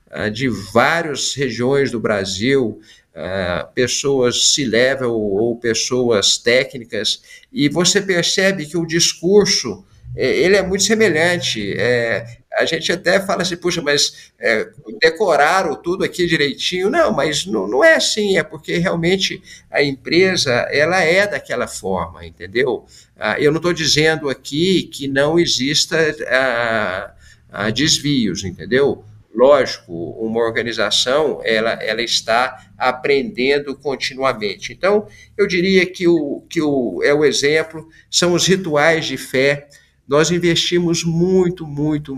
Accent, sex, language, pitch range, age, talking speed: Brazilian, male, Portuguese, 115-170 Hz, 50-69, 120 wpm